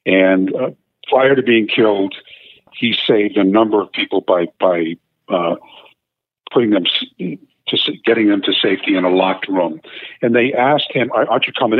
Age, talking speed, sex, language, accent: 50-69, 170 wpm, male, English, American